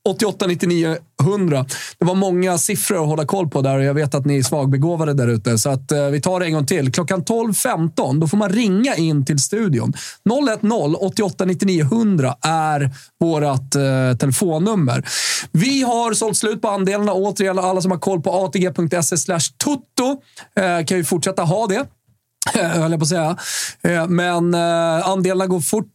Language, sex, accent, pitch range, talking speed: Swedish, male, native, 145-190 Hz, 160 wpm